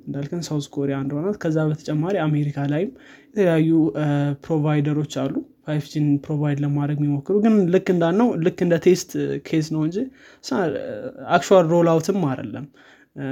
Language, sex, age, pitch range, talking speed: Amharic, male, 20-39, 145-185 Hz, 85 wpm